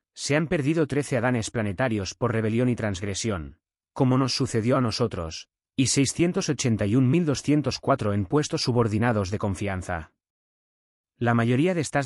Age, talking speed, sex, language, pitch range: 30-49, 130 wpm, male, Spanish, 105-135 Hz